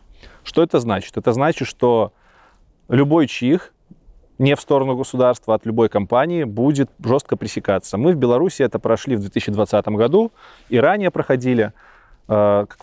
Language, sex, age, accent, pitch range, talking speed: Russian, male, 20-39, native, 105-135 Hz, 140 wpm